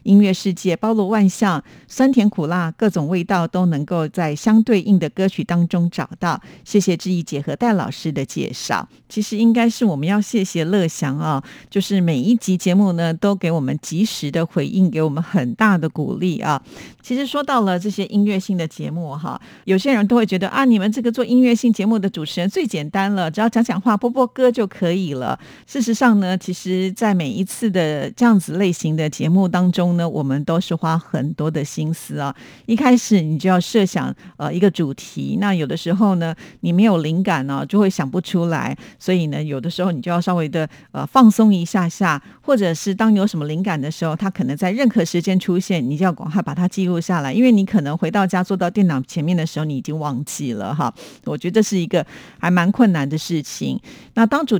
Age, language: 50-69, Chinese